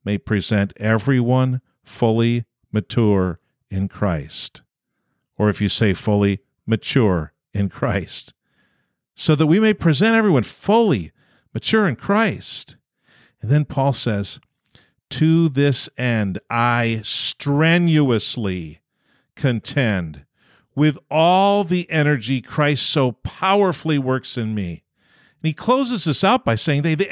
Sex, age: male, 50-69